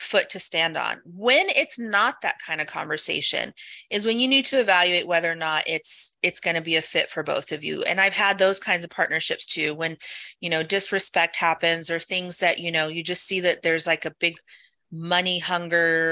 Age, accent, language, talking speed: 30-49, American, English, 220 wpm